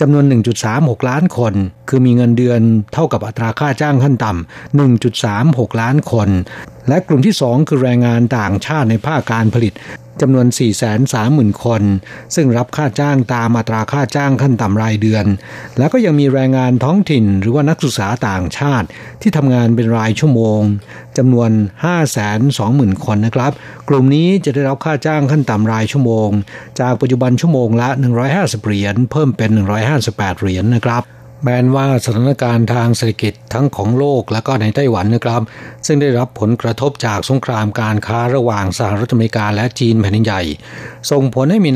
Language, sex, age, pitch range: Thai, male, 60-79, 110-135 Hz